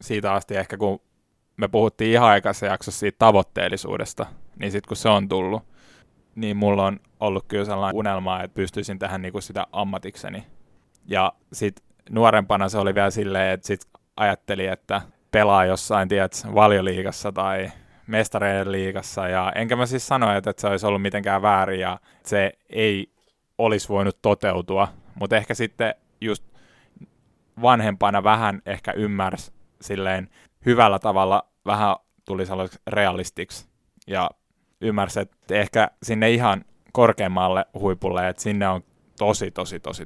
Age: 20-39